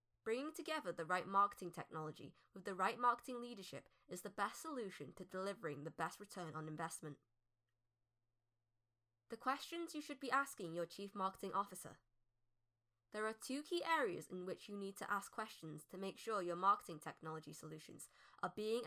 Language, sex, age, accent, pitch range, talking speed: English, female, 10-29, British, 155-235 Hz, 170 wpm